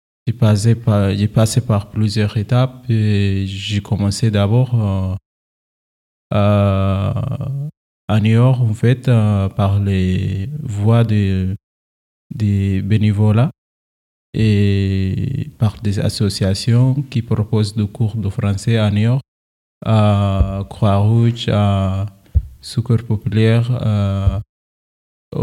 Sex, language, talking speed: male, French, 110 wpm